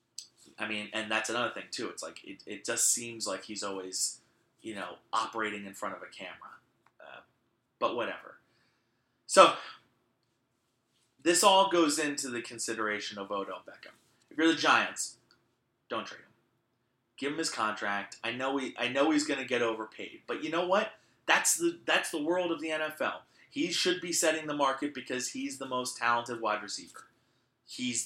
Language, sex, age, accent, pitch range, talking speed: English, male, 30-49, American, 115-150 Hz, 180 wpm